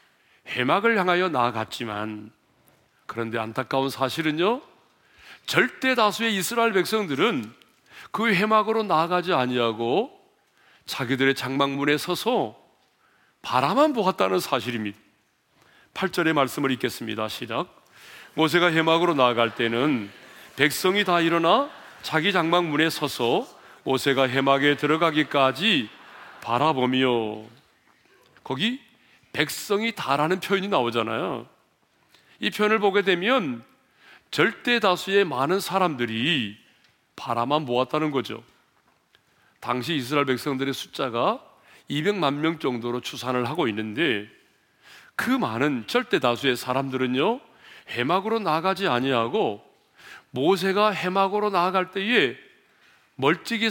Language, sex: Korean, male